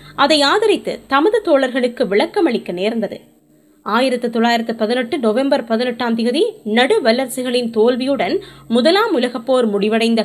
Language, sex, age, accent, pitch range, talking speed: Tamil, female, 20-39, native, 225-315 Hz, 110 wpm